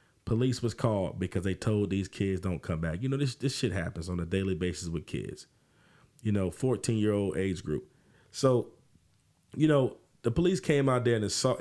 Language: English